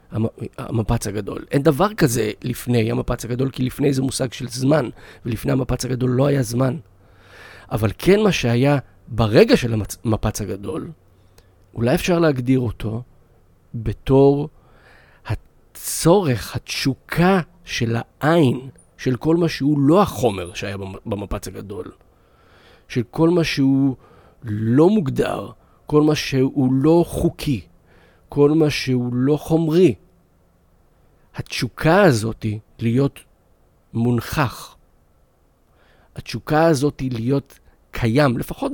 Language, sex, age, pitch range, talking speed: Hebrew, male, 40-59, 110-145 Hz, 110 wpm